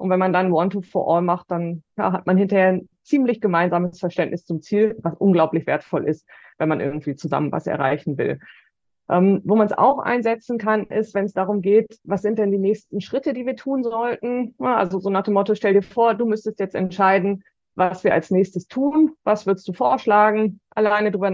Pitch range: 180-215 Hz